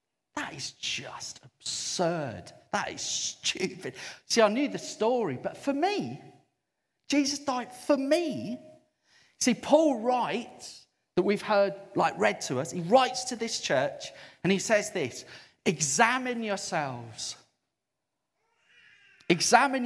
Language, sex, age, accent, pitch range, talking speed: English, male, 40-59, British, 155-240 Hz, 125 wpm